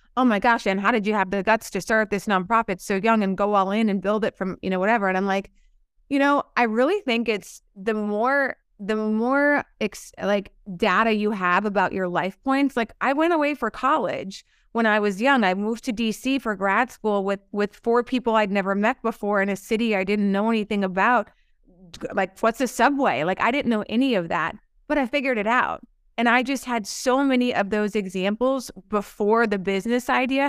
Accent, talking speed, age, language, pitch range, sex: American, 215 wpm, 30-49, English, 200-250 Hz, female